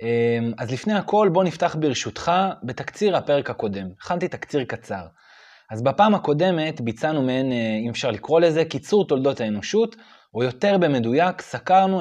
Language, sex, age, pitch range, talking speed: Hebrew, male, 20-39, 120-180 Hz, 135 wpm